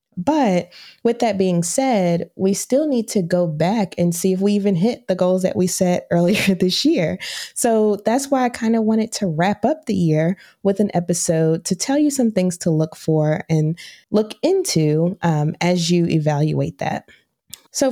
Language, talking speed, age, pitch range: English, 190 wpm, 20-39, 165-225 Hz